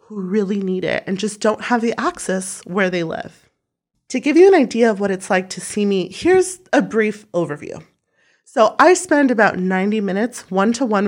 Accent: American